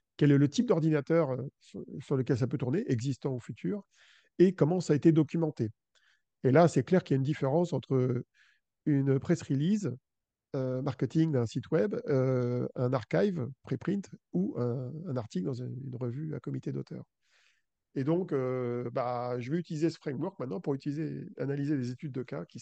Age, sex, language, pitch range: 40-59, male, French, 130-160 Hz